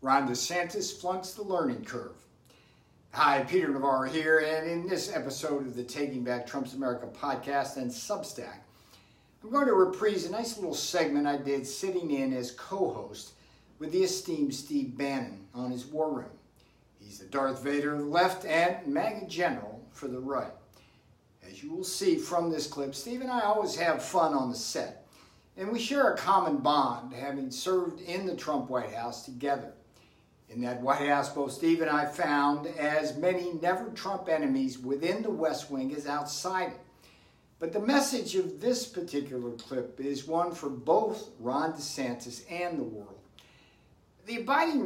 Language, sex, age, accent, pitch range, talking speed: English, male, 60-79, American, 135-190 Hz, 170 wpm